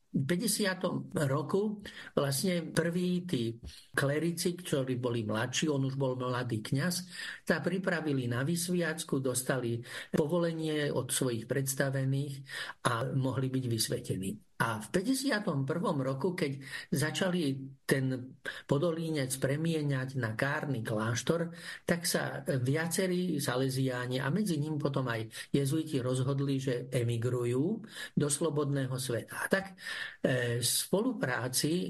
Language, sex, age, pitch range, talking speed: Slovak, male, 50-69, 130-170 Hz, 115 wpm